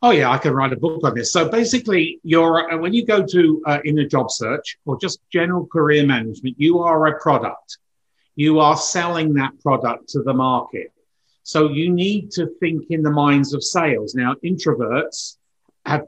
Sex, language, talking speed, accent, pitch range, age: male, English, 190 wpm, British, 125-155 Hz, 50-69